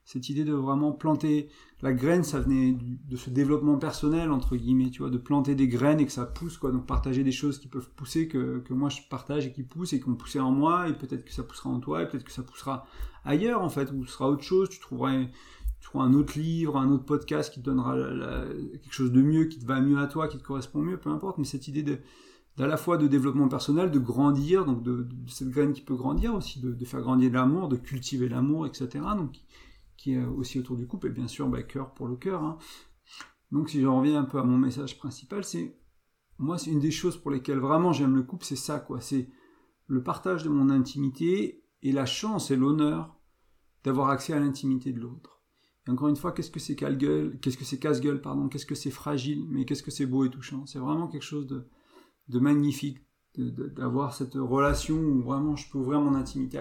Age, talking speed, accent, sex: 30-49, 245 wpm, French, male